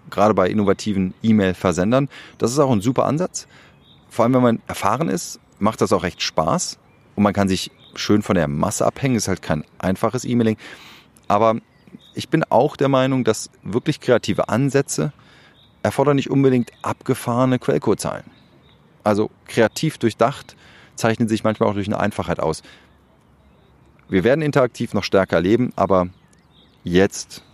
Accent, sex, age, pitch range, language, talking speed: German, male, 30-49, 90-120 Hz, German, 155 wpm